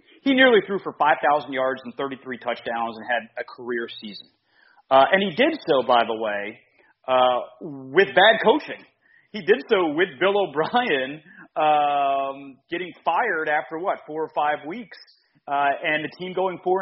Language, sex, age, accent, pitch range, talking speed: English, male, 30-49, American, 135-195 Hz, 170 wpm